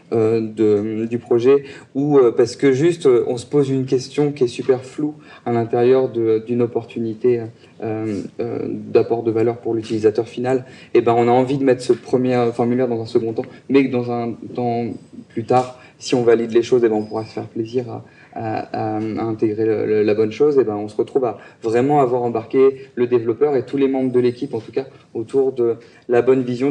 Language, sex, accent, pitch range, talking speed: French, male, French, 115-135 Hz, 220 wpm